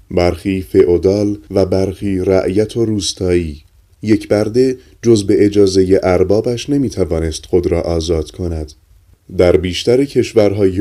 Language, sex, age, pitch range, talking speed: Persian, male, 30-49, 90-100 Hz, 115 wpm